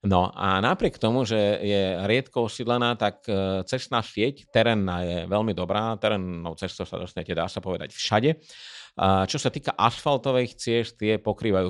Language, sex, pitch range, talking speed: Slovak, male, 90-110 Hz, 155 wpm